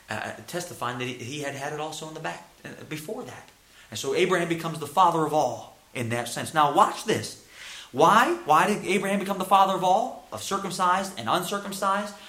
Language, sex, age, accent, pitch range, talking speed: English, male, 30-49, American, 155-205 Hz, 205 wpm